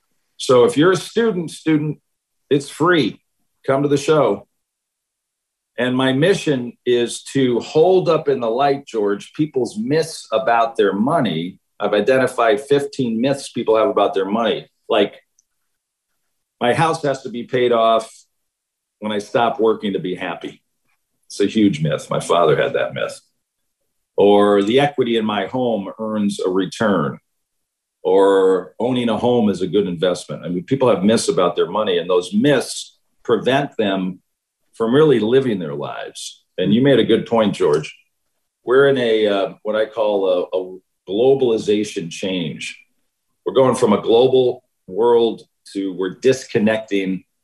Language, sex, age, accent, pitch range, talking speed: English, male, 50-69, American, 105-145 Hz, 155 wpm